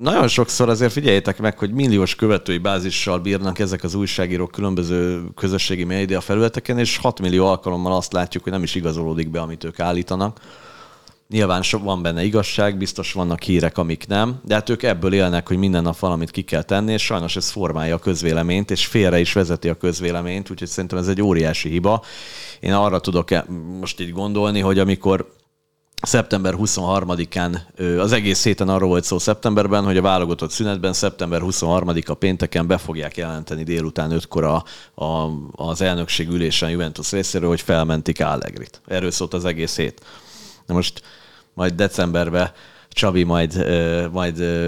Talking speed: 160 wpm